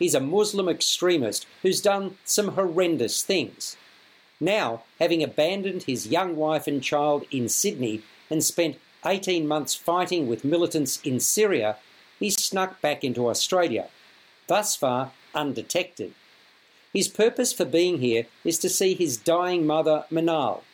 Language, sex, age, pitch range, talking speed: English, male, 50-69, 145-180 Hz, 140 wpm